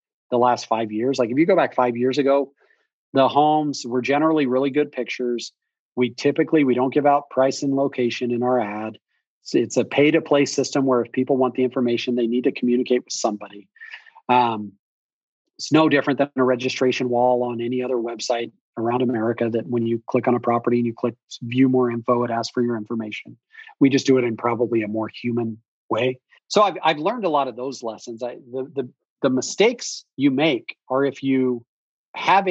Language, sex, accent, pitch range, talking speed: English, male, American, 120-140 Hz, 205 wpm